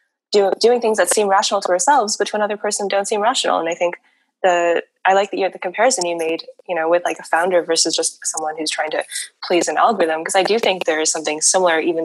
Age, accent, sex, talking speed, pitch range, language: 10-29, American, female, 255 wpm, 170-205 Hz, English